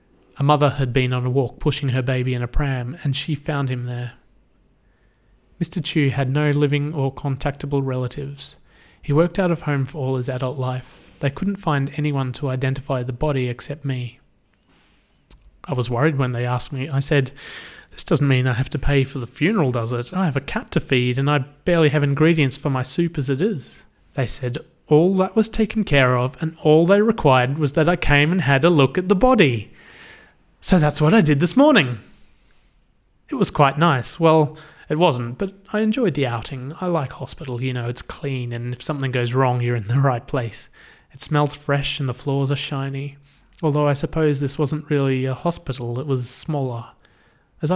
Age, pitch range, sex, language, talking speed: 30-49, 130-155 Hz, male, English, 205 wpm